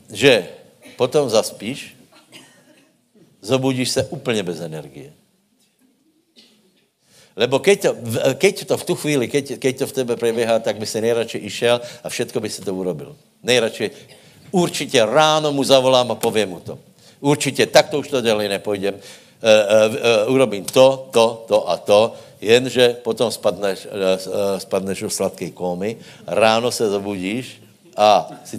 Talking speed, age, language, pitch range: 150 wpm, 70-89, Slovak, 110-150 Hz